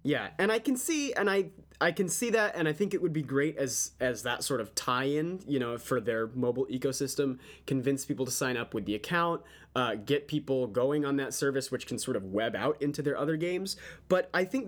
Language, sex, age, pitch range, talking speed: English, male, 20-39, 120-155 Hz, 240 wpm